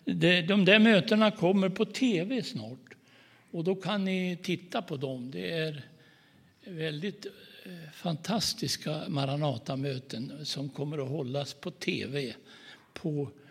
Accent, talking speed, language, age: native, 115 wpm, Swedish, 60-79